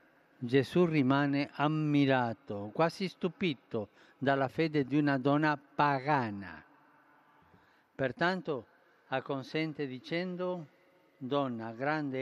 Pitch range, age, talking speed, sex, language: 130-165 Hz, 50-69, 80 wpm, male, Italian